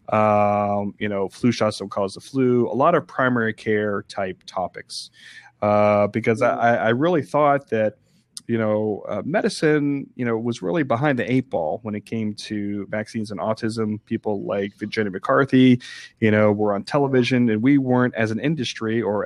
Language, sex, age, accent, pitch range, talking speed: English, male, 30-49, American, 105-115 Hz, 180 wpm